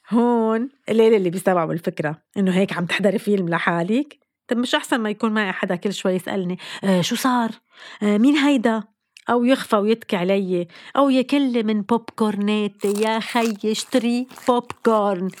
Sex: female